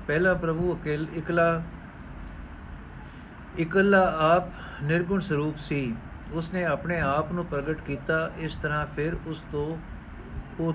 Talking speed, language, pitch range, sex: 115 wpm, Punjabi, 135-165 Hz, male